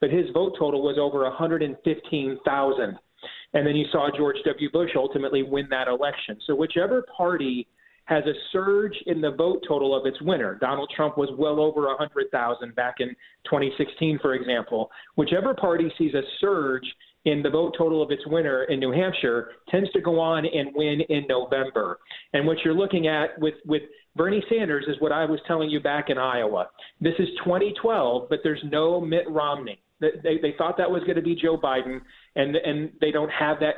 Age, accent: 30-49, American